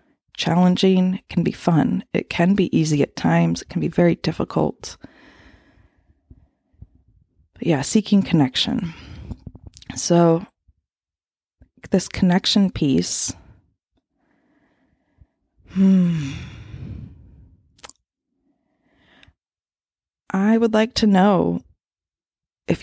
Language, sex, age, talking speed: English, female, 20-39, 80 wpm